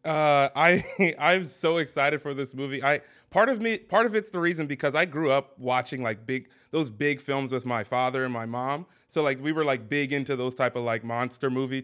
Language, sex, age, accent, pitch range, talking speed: English, male, 20-39, American, 130-160 Hz, 235 wpm